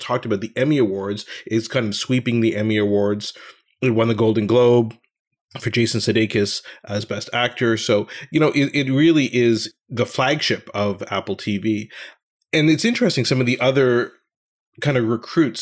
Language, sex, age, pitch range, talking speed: English, male, 30-49, 105-125 Hz, 175 wpm